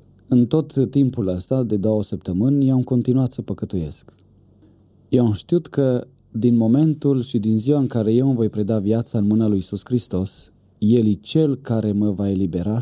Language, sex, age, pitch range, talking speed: English, male, 30-49, 100-125 Hz, 180 wpm